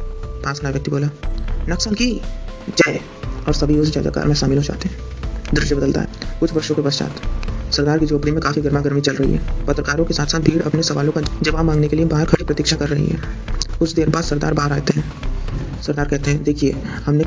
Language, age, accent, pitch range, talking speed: Hindi, 30-49, native, 145-165 Hz, 200 wpm